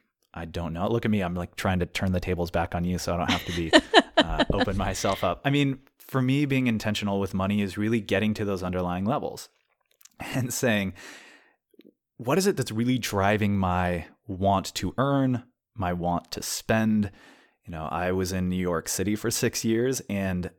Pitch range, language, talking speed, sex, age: 95-120 Hz, English, 200 wpm, male, 20-39